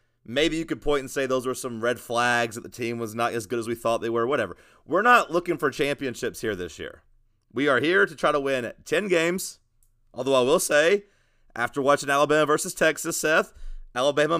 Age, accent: 30-49, American